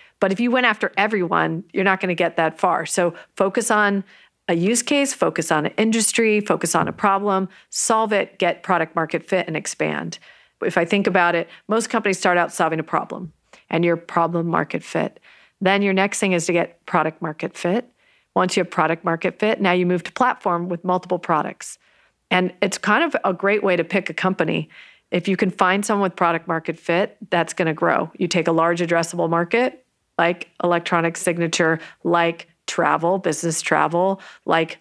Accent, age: American, 40-59